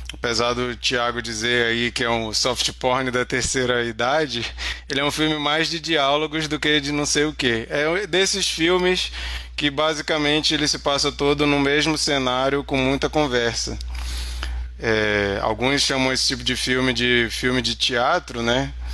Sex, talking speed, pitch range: male, 170 wpm, 115-145 Hz